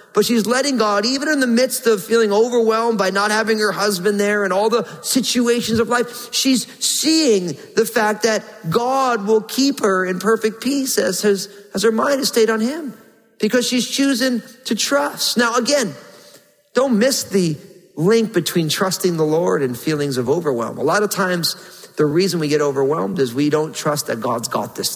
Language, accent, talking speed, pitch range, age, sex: English, American, 190 wpm, 180-235 Hz, 40-59, male